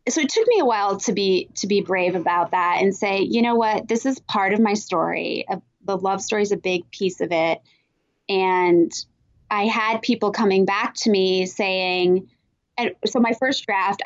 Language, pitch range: English, 180-220 Hz